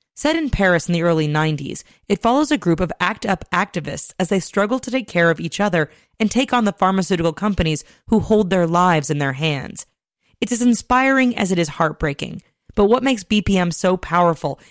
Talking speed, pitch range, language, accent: 200 wpm, 165-215 Hz, English, American